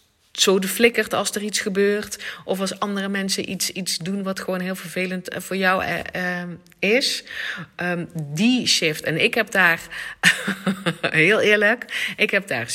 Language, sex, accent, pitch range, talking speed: Dutch, female, Dutch, 160-205 Hz, 160 wpm